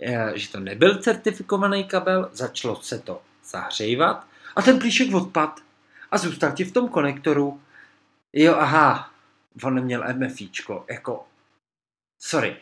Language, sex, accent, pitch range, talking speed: Czech, male, native, 115-155 Hz, 125 wpm